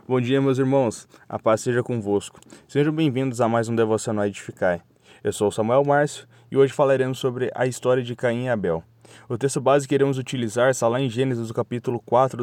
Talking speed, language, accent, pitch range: 210 wpm, Portuguese, Brazilian, 115-140 Hz